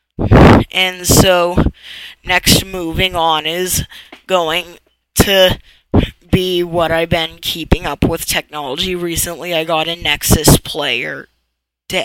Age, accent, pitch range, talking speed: 10-29, American, 155-175 Hz, 115 wpm